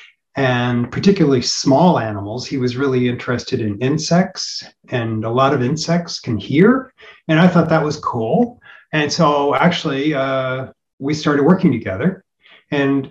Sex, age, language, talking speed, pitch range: male, 40-59, English, 145 wpm, 125-165 Hz